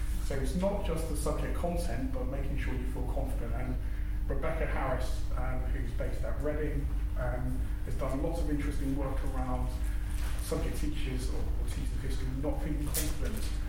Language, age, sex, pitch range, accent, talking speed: English, 30-49, male, 85-125 Hz, British, 170 wpm